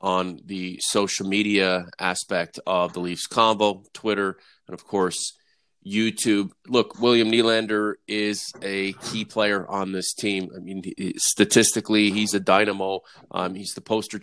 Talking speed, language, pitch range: 145 wpm, English, 100-115 Hz